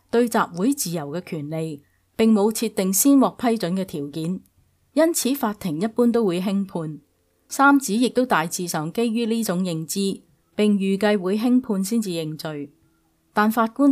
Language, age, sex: Chinese, 30-49, female